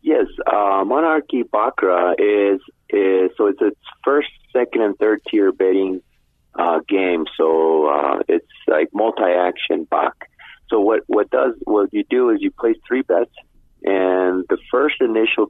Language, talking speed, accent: English, 150 wpm, American